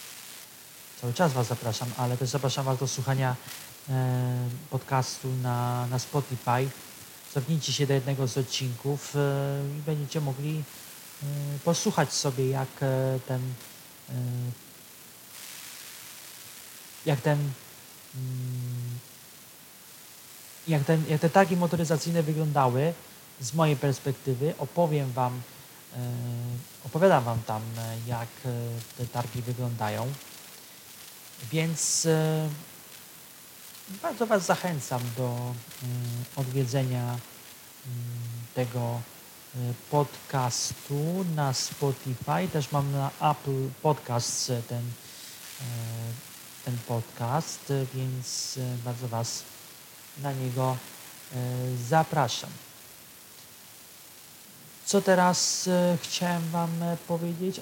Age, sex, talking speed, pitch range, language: 30-49, male, 95 wpm, 125-155 Hz, Polish